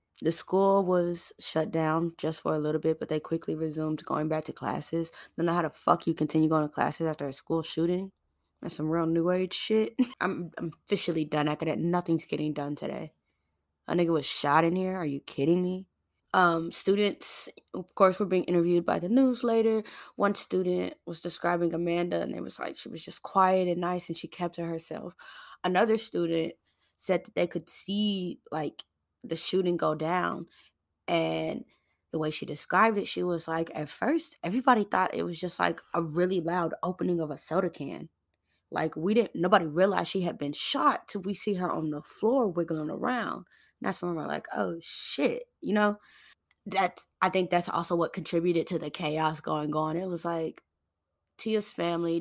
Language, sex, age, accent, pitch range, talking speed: English, female, 20-39, American, 155-185 Hz, 195 wpm